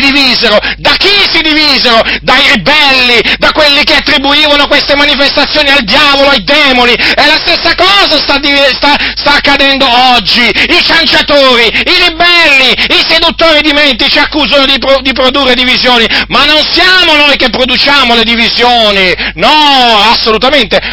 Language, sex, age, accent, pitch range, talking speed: Italian, male, 40-59, native, 250-295 Hz, 145 wpm